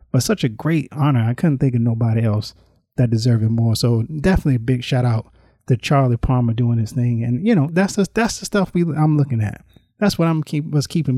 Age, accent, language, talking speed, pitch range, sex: 30-49, American, English, 240 wpm, 120-165 Hz, male